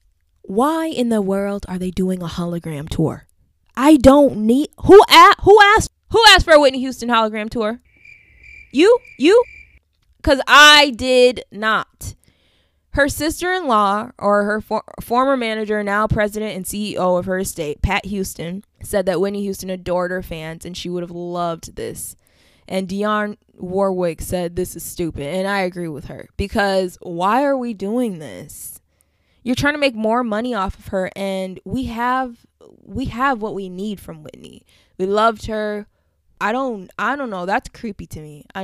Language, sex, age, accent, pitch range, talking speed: English, female, 20-39, American, 175-235 Hz, 170 wpm